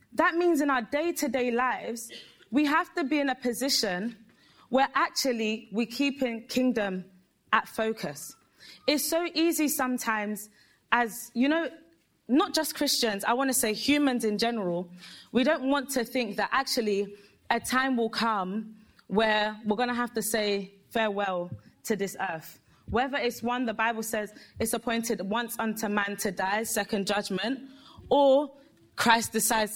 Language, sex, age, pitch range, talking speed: English, female, 20-39, 210-260 Hz, 155 wpm